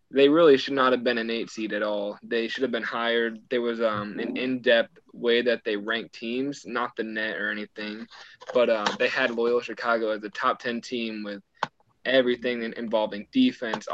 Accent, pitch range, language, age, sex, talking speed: American, 110-125 Hz, English, 20-39, male, 195 wpm